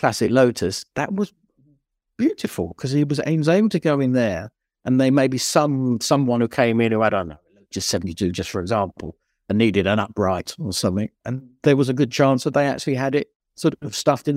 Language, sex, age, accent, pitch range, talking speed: English, male, 50-69, British, 110-145 Hz, 215 wpm